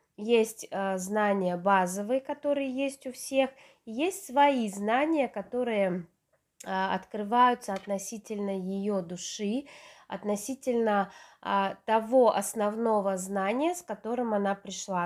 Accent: native